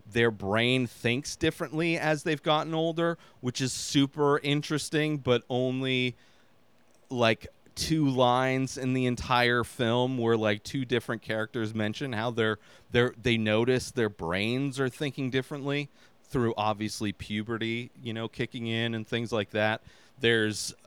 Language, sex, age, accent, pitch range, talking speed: English, male, 30-49, American, 115-150 Hz, 140 wpm